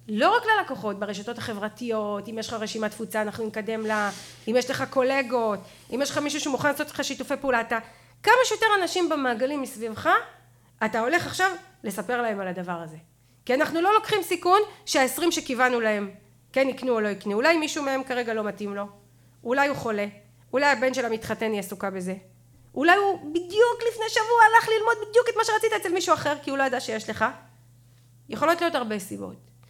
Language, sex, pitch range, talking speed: Hebrew, female, 180-285 Hz, 160 wpm